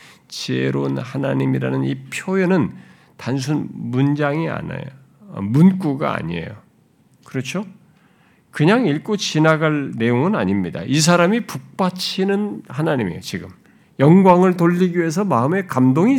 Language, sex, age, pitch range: Korean, male, 50-69, 115-190 Hz